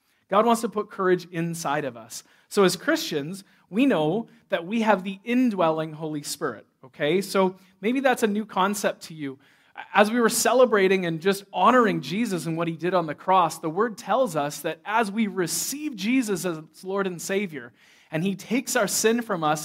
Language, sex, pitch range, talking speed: English, male, 170-230 Hz, 195 wpm